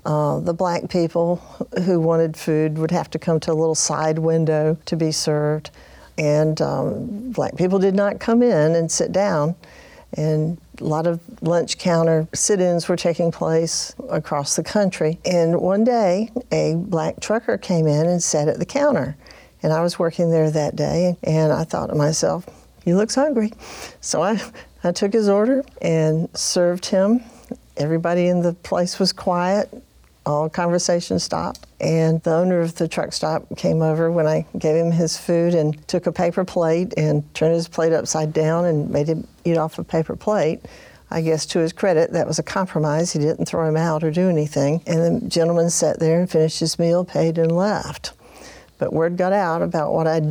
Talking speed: 190 wpm